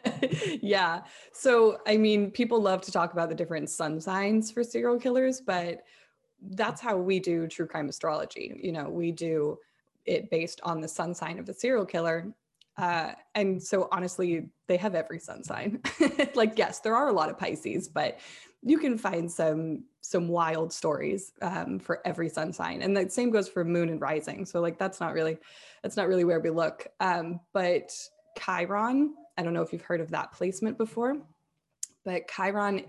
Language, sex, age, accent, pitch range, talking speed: English, female, 20-39, American, 165-205 Hz, 185 wpm